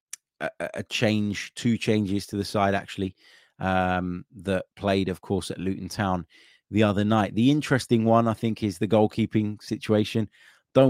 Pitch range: 95-115 Hz